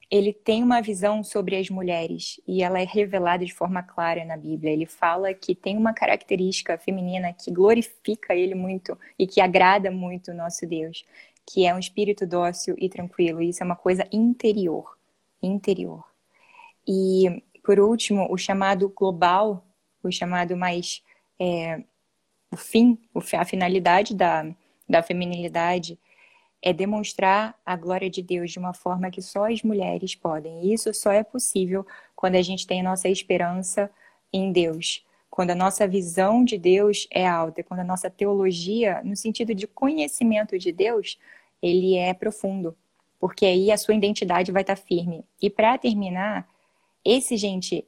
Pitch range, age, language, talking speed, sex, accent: 180-210 Hz, 10-29, Portuguese, 155 wpm, female, Brazilian